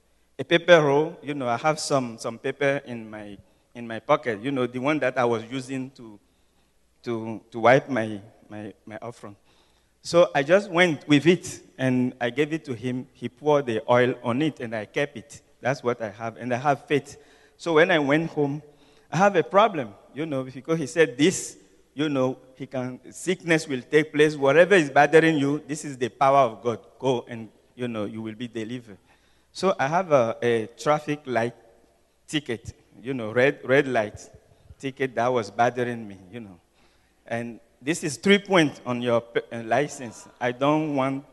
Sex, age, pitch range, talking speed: male, 50-69, 115-145 Hz, 195 wpm